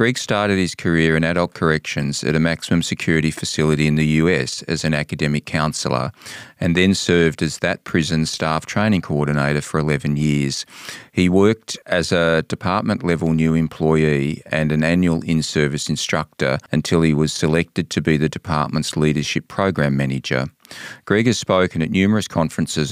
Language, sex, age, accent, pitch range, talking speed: English, male, 40-59, Australian, 75-95 Hz, 155 wpm